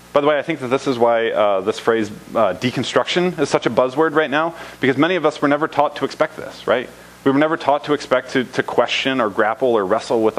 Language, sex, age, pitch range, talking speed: English, male, 30-49, 100-145 Hz, 260 wpm